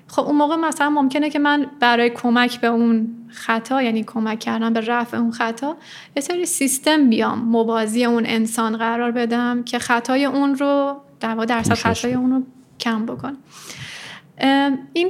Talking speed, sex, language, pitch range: 160 wpm, female, Persian, 225-255 Hz